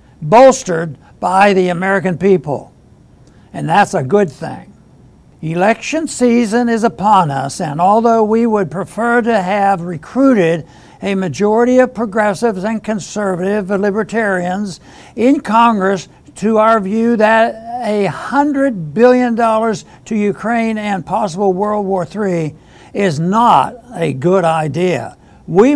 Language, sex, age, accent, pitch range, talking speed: English, male, 60-79, American, 185-230 Hz, 125 wpm